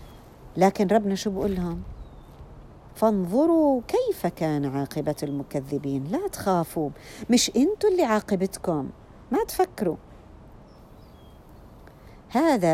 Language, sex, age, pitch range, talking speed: Arabic, female, 50-69, 160-220 Hz, 85 wpm